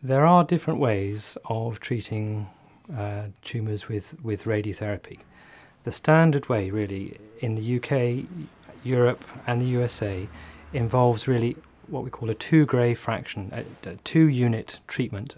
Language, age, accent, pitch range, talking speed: English, 40-59, British, 105-130 Hz, 140 wpm